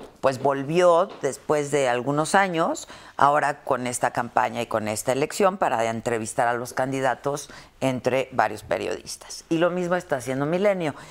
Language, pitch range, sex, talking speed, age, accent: Spanish, 120-160 Hz, female, 150 wpm, 50-69, Mexican